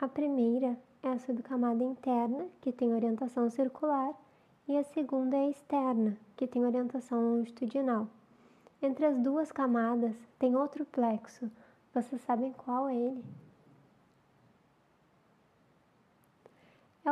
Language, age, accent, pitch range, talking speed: Portuguese, 20-39, Brazilian, 245-275 Hz, 115 wpm